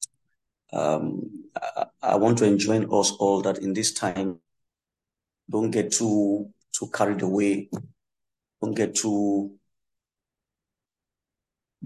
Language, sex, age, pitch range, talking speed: English, male, 50-69, 95-105 Hz, 100 wpm